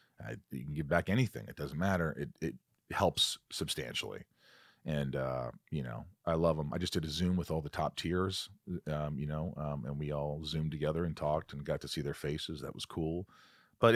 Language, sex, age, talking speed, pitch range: English, male, 40-59, 220 wpm, 75-95 Hz